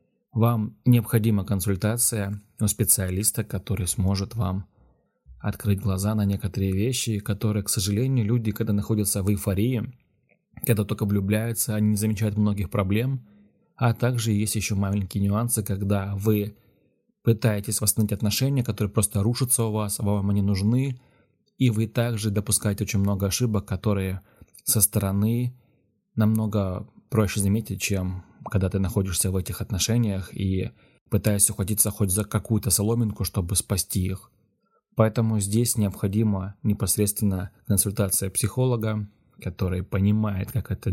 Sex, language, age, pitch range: male, Russian, 20-39, 100-115 Hz